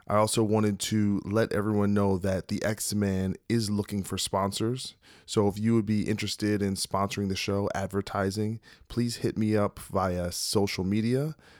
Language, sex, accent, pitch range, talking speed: English, male, American, 95-110 Hz, 165 wpm